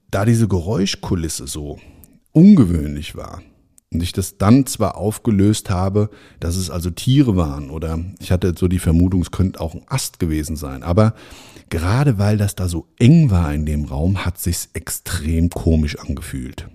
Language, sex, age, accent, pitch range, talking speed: German, male, 50-69, German, 80-100 Hz, 170 wpm